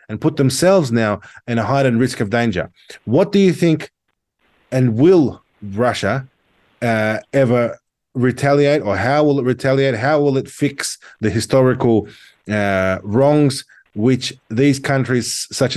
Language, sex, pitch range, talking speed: English, male, 110-135 Hz, 140 wpm